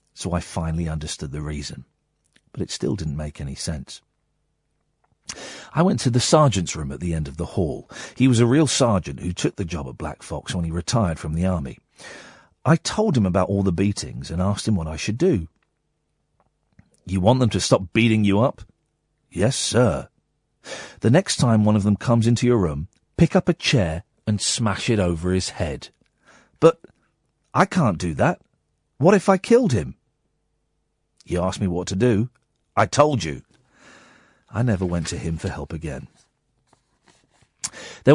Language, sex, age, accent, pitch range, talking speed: English, male, 40-59, British, 85-125 Hz, 180 wpm